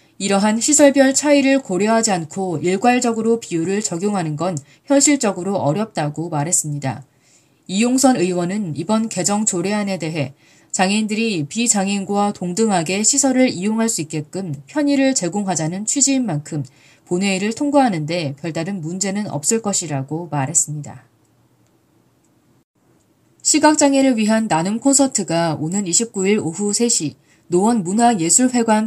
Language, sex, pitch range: Korean, female, 160-235 Hz